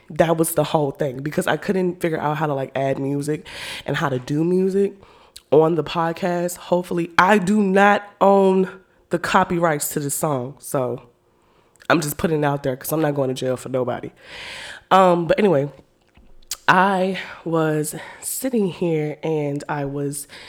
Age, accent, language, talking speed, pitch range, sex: 20-39, American, English, 170 wpm, 135-175 Hz, female